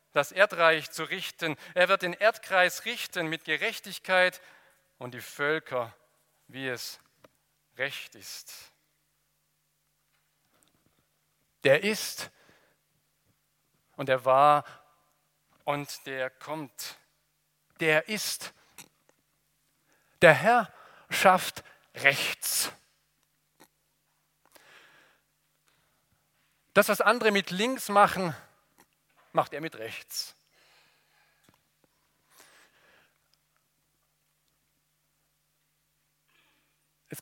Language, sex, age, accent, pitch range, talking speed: German, male, 50-69, German, 145-190 Hz, 70 wpm